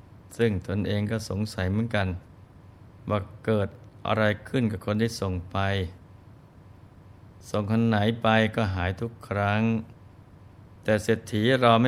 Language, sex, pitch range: Thai, male, 95-115 Hz